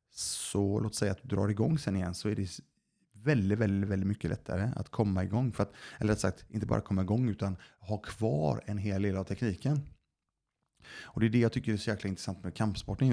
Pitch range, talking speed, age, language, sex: 90-110 Hz, 220 wpm, 30-49, Swedish, male